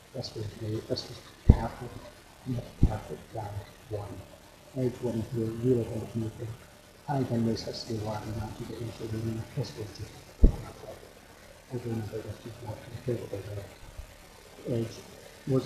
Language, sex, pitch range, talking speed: English, male, 110-125 Hz, 100 wpm